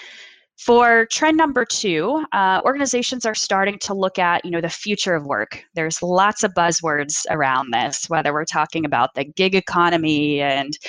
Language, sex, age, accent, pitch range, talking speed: English, female, 20-39, American, 160-200 Hz, 170 wpm